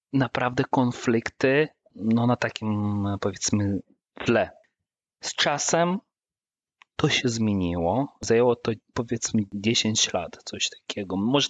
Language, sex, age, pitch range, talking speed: Polish, male, 30-49, 100-120 Hz, 105 wpm